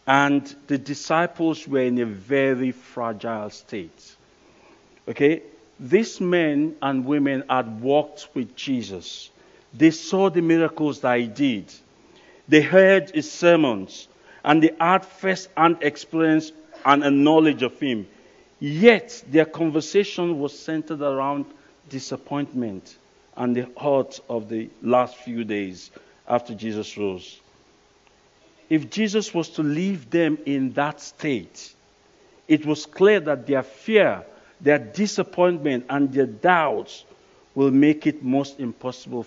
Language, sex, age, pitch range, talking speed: English, male, 50-69, 130-175 Hz, 125 wpm